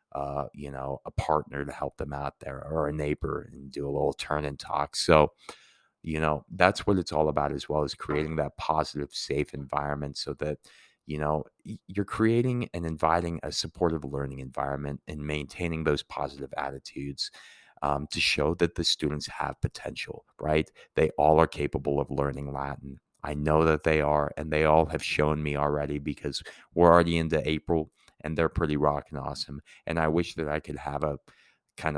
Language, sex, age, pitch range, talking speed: English, male, 30-49, 70-80 Hz, 190 wpm